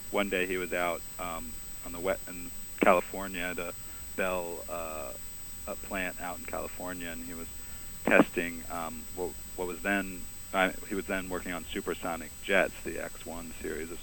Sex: male